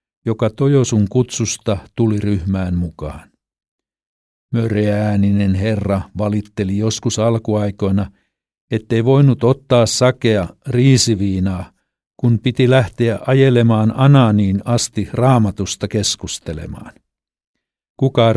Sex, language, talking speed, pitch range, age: male, Finnish, 80 wpm, 95-120 Hz, 60-79